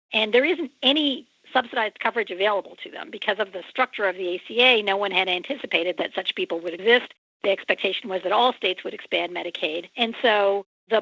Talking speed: 200 wpm